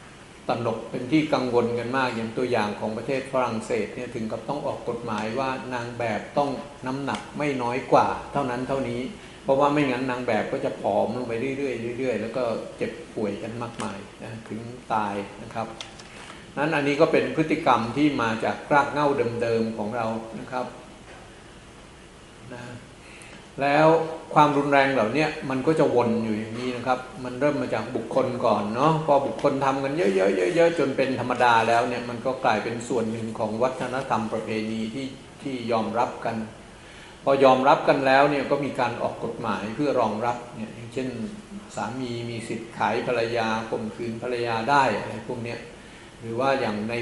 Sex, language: male, Thai